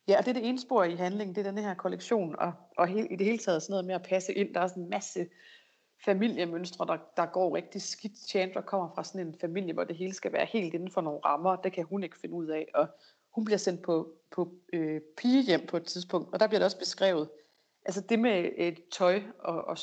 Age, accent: 30-49, native